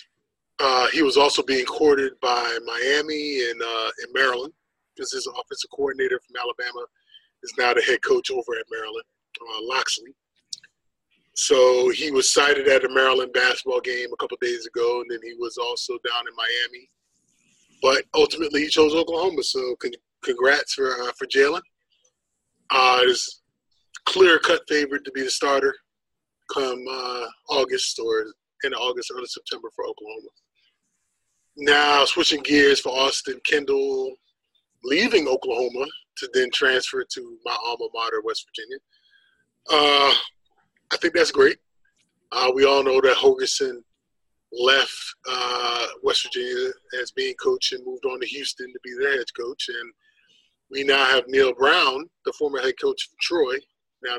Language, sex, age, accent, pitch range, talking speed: English, male, 20-39, American, 370-435 Hz, 150 wpm